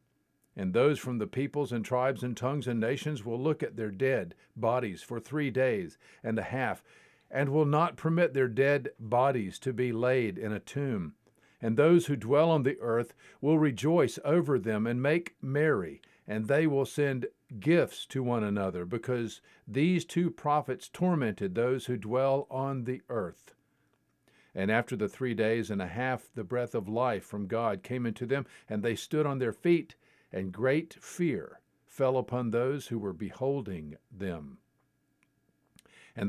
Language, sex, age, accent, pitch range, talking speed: English, male, 50-69, American, 110-145 Hz, 170 wpm